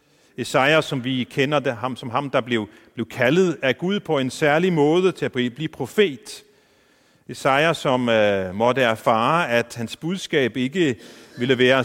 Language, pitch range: Danish, 120-165 Hz